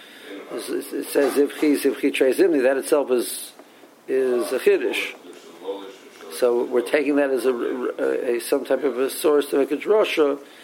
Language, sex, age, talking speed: English, male, 50-69, 185 wpm